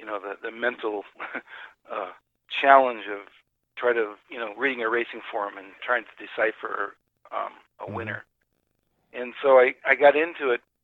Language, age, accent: English, 50-69, American